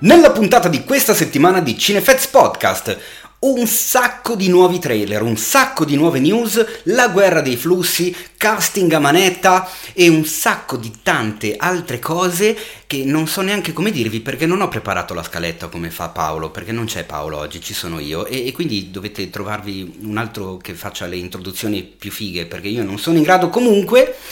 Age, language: 30-49, Italian